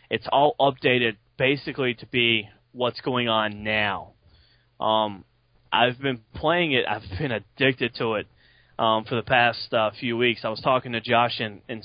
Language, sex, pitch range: English, male, 115-140 Hz